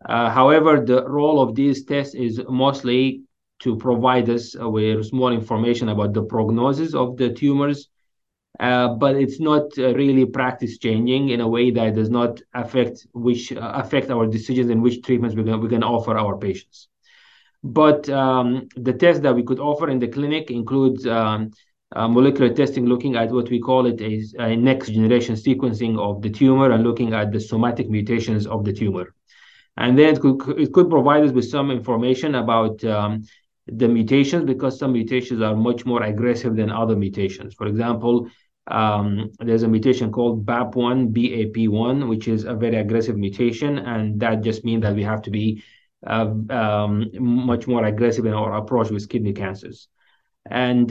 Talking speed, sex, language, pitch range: 180 wpm, male, English, 115-130 Hz